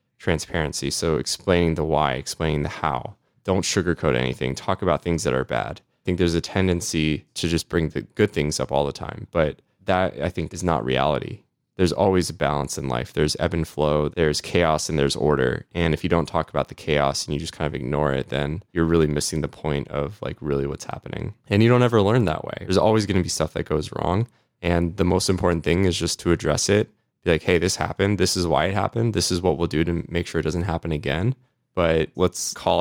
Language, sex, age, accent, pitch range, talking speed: English, male, 20-39, American, 80-95 Hz, 240 wpm